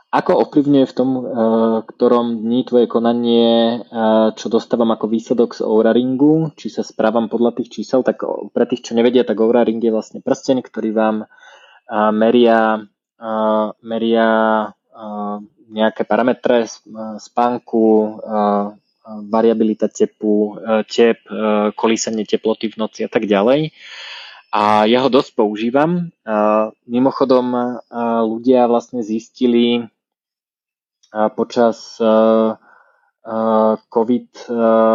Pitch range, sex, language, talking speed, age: 110-120 Hz, male, Slovak, 100 wpm, 20-39